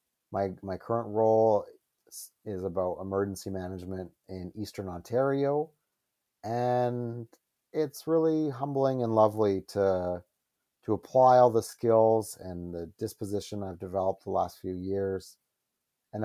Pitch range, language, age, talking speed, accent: 95-120 Hz, English, 30-49, 120 wpm, American